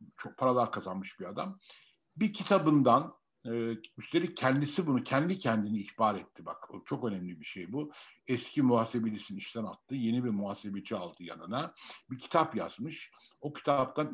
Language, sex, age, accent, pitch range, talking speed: Turkish, male, 60-79, native, 115-155 Hz, 150 wpm